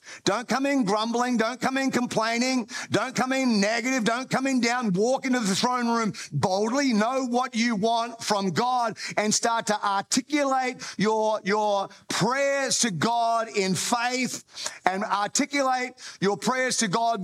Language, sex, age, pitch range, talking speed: English, male, 50-69, 170-235 Hz, 155 wpm